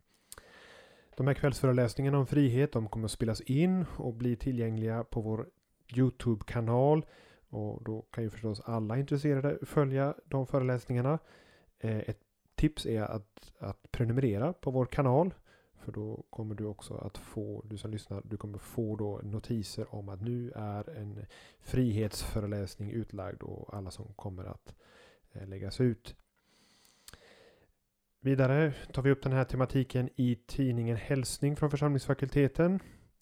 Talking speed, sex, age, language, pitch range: 140 wpm, male, 30-49, Swedish, 105-130 Hz